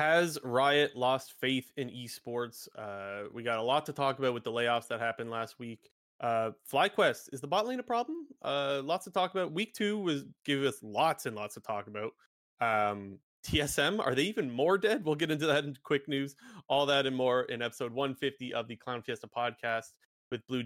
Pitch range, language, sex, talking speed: 115-145 Hz, English, male, 215 wpm